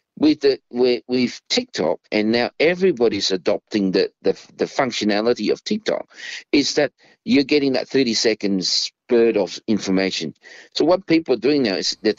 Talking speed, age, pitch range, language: 145 wpm, 50-69, 120-175 Hz, English